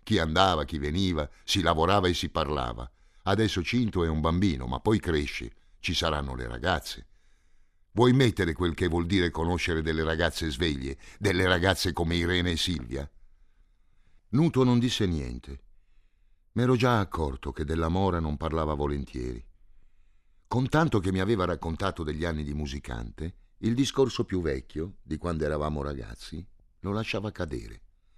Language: Italian